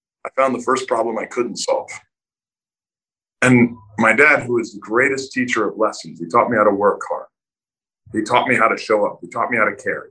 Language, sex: English, male